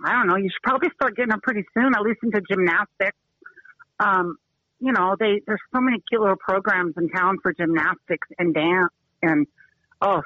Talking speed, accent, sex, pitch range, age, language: 195 wpm, American, female, 180-220 Hz, 50-69, English